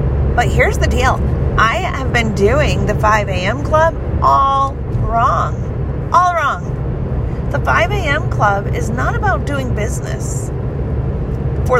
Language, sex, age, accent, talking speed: English, female, 40-59, American, 120 wpm